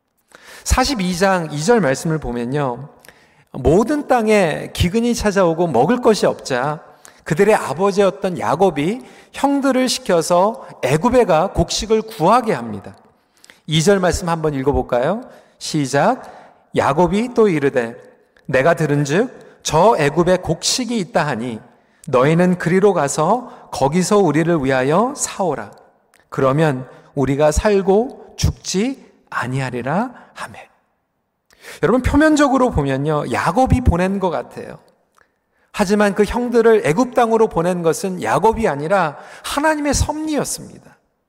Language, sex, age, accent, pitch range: Korean, male, 40-59, native, 160-245 Hz